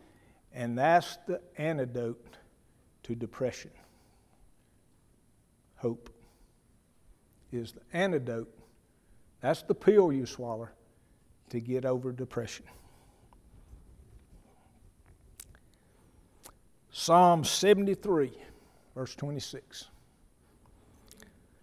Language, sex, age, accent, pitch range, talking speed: English, male, 60-79, American, 115-165 Hz, 65 wpm